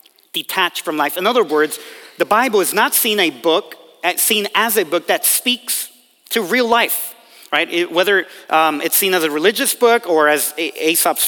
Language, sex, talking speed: English, male, 190 wpm